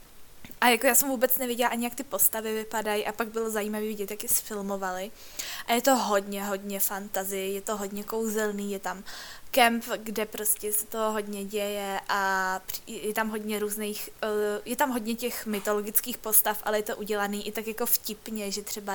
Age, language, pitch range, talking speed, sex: 20-39, Czech, 205-230 Hz, 185 wpm, female